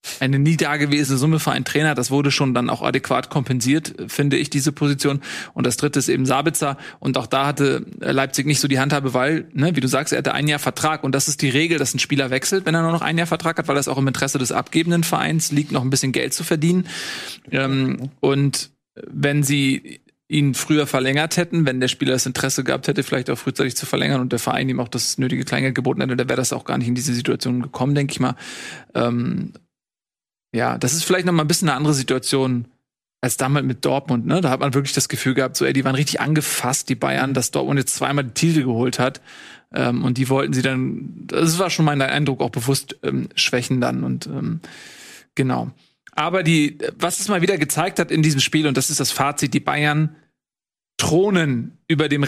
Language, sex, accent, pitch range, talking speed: German, male, German, 130-155 Hz, 225 wpm